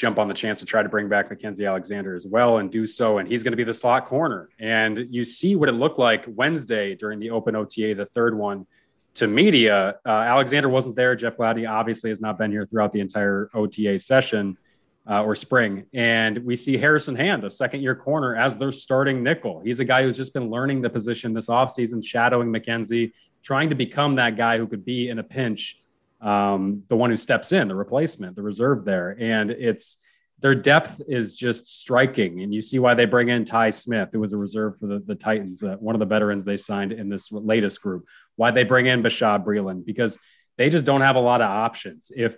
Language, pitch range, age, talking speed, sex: English, 105-125 Hz, 30-49, 225 wpm, male